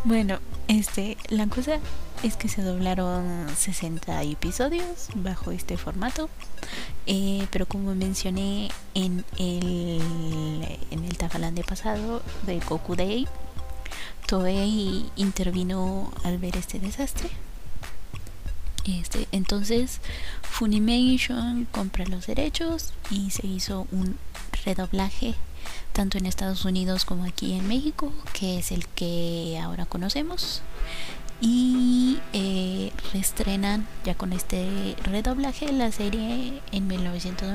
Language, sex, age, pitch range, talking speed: Spanish, female, 20-39, 180-220 Hz, 110 wpm